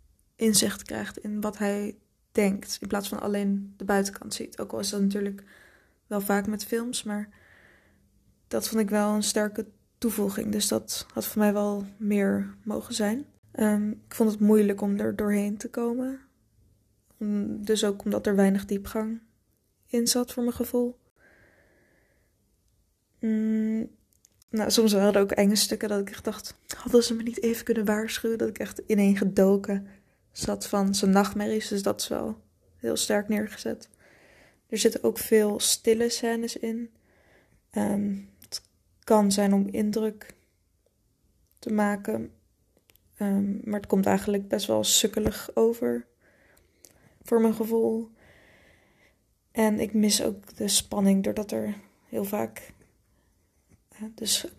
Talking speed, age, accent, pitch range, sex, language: 140 wpm, 20-39, Dutch, 200-225 Hz, female, Dutch